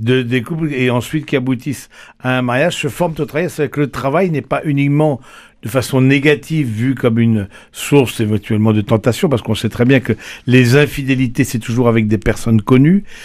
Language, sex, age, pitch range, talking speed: French, male, 60-79, 115-150 Hz, 210 wpm